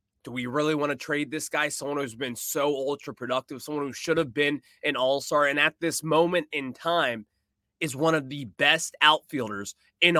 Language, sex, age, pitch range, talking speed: English, male, 20-39, 140-200 Hz, 200 wpm